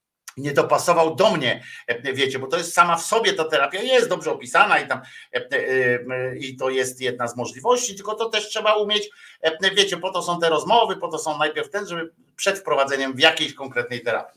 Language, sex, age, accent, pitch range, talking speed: Polish, male, 50-69, native, 150-210 Hz, 195 wpm